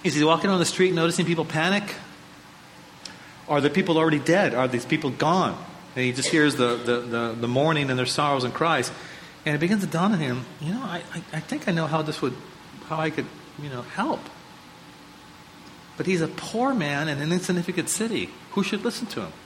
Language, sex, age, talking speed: English, male, 40-59, 215 wpm